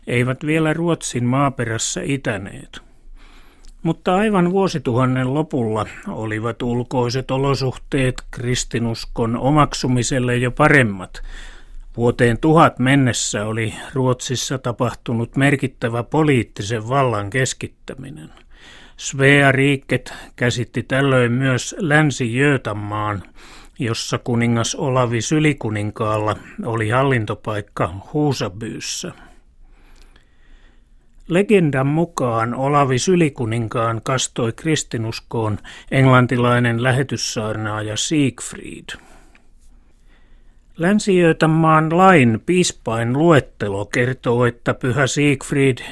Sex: male